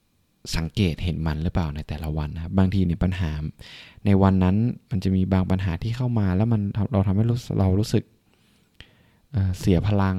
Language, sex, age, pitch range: Thai, male, 20-39, 85-110 Hz